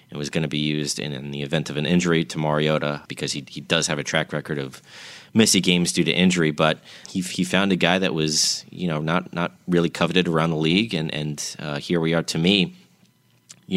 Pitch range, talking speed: 75-85 Hz, 240 wpm